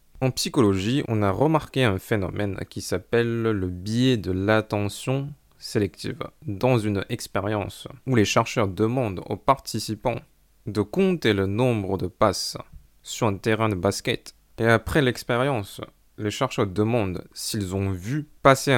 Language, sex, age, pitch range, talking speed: French, male, 20-39, 100-125 Hz, 140 wpm